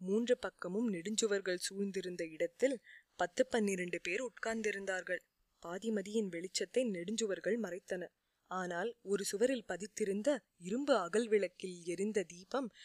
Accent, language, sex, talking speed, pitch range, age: native, Tamil, female, 105 wpm, 180-225 Hz, 20-39